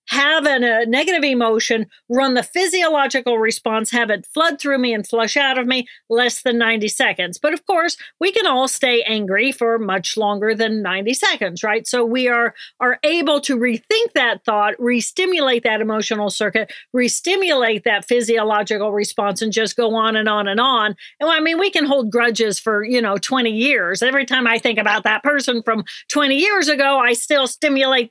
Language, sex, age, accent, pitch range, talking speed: English, female, 50-69, American, 225-285 Hz, 190 wpm